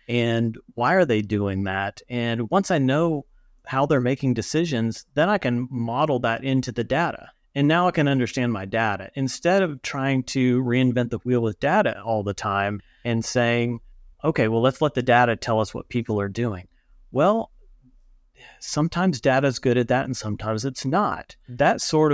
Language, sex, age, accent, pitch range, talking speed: English, male, 30-49, American, 110-130 Hz, 185 wpm